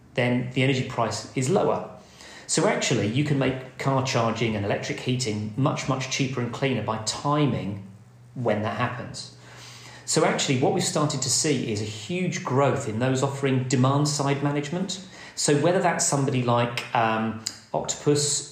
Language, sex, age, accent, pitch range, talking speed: English, male, 40-59, British, 125-145 Hz, 160 wpm